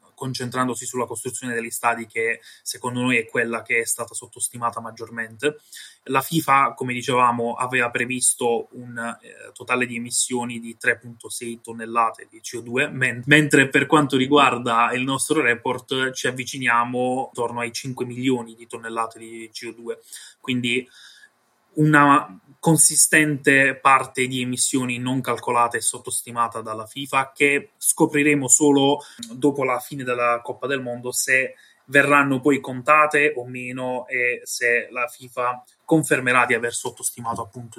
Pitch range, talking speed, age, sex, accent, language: 120-140 Hz, 135 wpm, 20-39, male, native, Italian